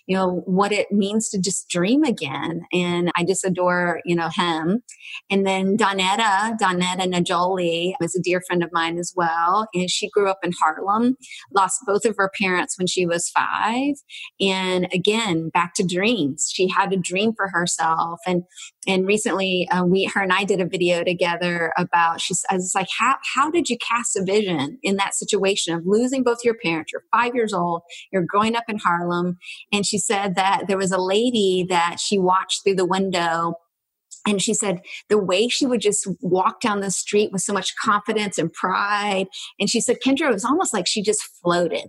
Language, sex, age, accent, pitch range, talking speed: English, female, 30-49, American, 180-215 Hz, 200 wpm